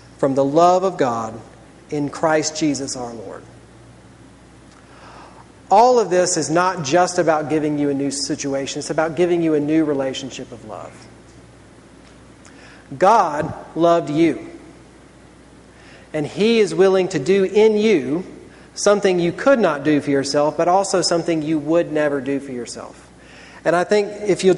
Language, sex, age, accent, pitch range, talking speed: English, male, 40-59, American, 150-185 Hz, 155 wpm